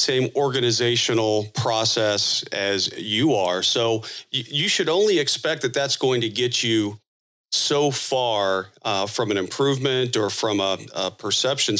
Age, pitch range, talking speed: 40-59, 110-135 Hz, 140 wpm